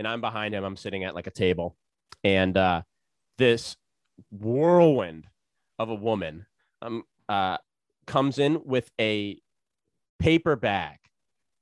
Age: 30-49